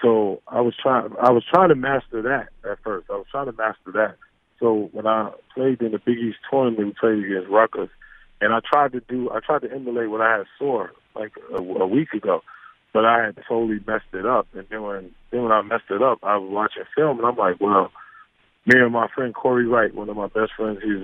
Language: English